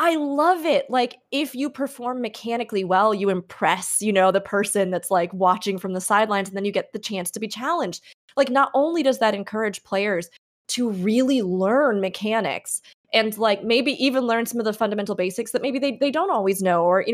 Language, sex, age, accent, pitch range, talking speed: English, female, 20-39, American, 195-275 Hz, 210 wpm